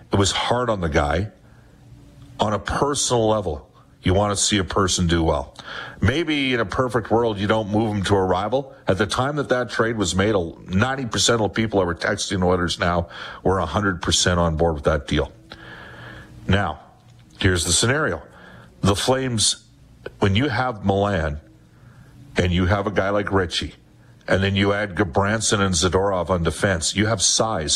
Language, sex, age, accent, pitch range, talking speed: English, male, 50-69, American, 90-115 Hz, 180 wpm